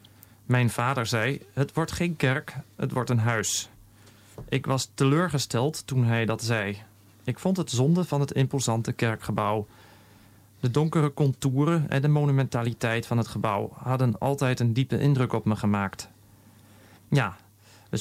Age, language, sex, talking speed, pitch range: 40-59, Dutch, male, 150 wpm, 110-140 Hz